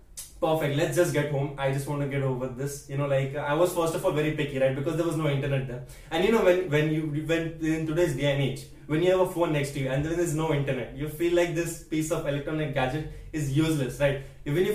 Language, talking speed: English, 275 wpm